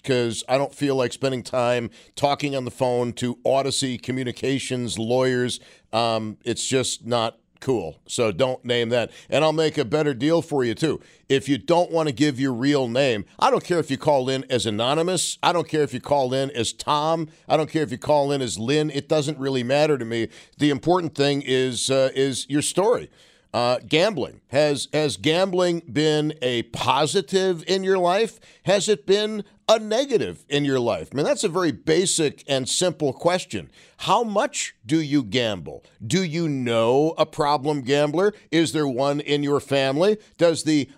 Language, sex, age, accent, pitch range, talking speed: English, male, 50-69, American, 130-160 Hz, 190 wpm